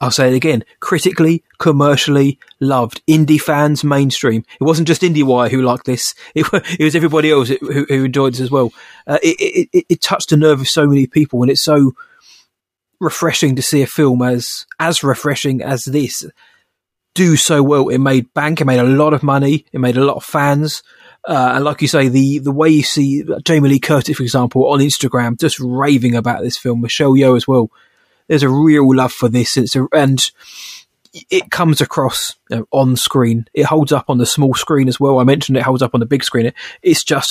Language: English